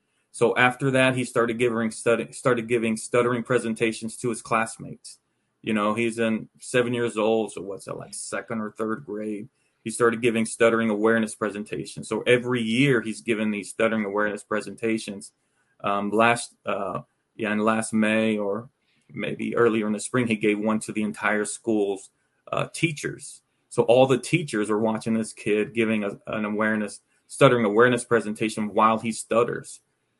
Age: 30-49